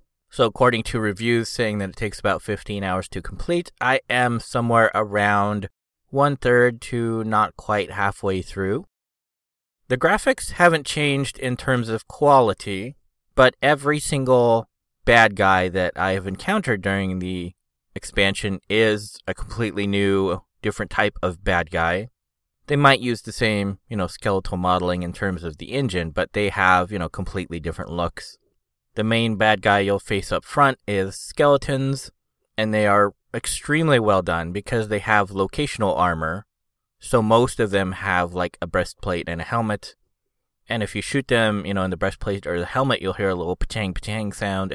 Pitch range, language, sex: 95-115 Hz, English, male